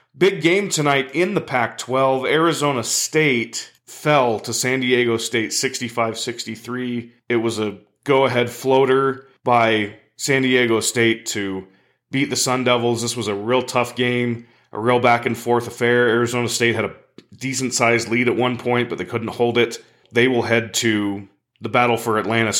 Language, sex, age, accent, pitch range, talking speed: English, male, 30-49, American, 110-130 Hz, 160 wpm